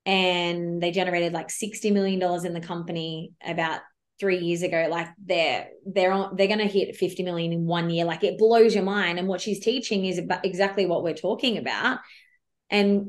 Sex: female